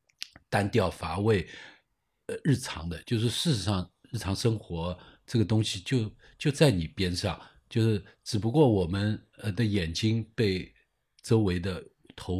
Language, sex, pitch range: Chinese, male, 95-125 Hz